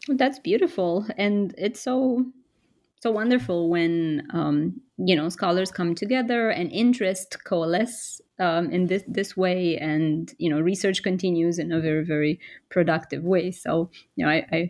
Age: 30-49